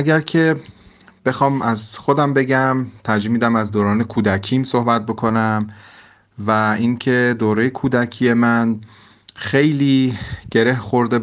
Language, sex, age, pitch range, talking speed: Persian, male, 30-49, 105-120 Hz, 110 wpm